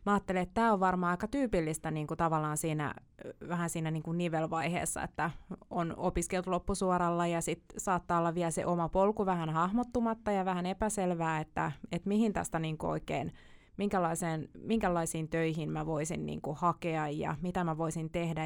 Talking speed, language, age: 170 wpm, Finnish, 20-39